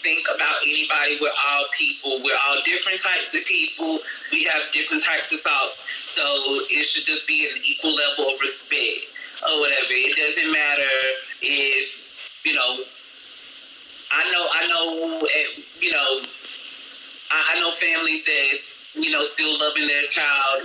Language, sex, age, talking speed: English, male, 30-49, 150 wpm